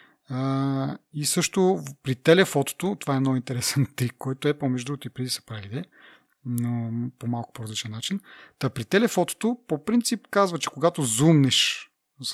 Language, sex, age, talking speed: Bulgarian, male, 30-49, 160 wpm